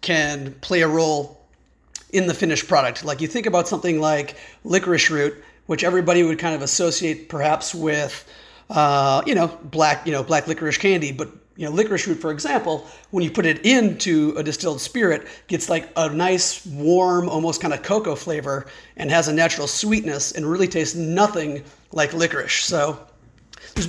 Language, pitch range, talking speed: English, 150-180 Hz, 180 wpm